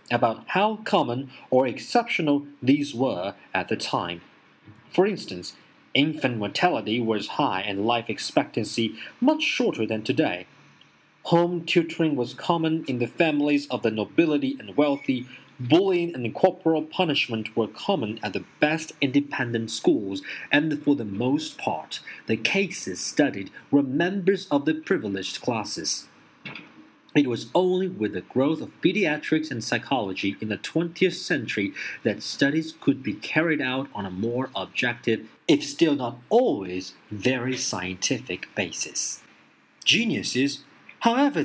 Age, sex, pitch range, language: 40-59, male, 110-160 Hz, Chinese